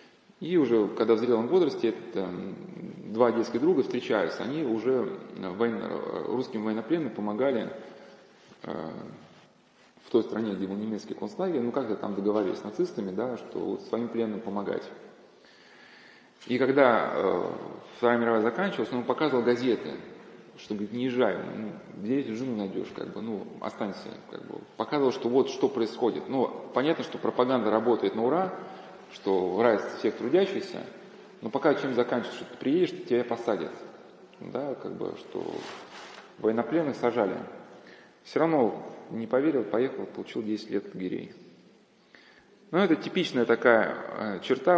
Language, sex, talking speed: Russian, male, 140 wpm